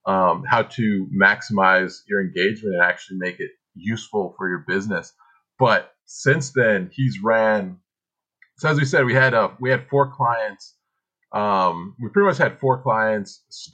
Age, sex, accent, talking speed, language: 30-49, male, American, 160 wpm, English